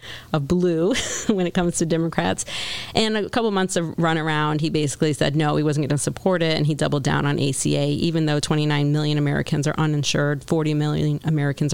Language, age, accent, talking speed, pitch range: English, 40-59, American, 210 wpm, 145-160 Hz